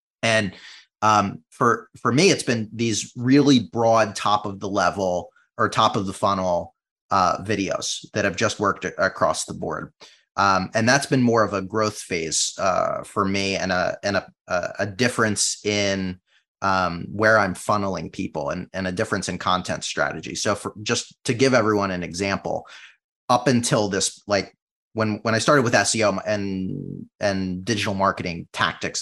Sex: male